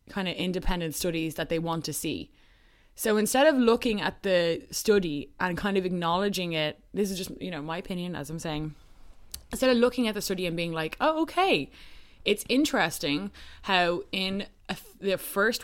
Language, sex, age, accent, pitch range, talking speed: English, female, 20-39, Irish, 165-205 Hz, 185 wpm